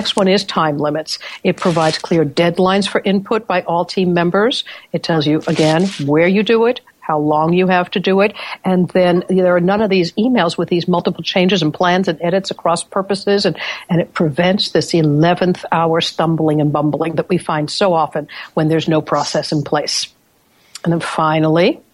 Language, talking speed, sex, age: English, 200 wpm, female, 60-79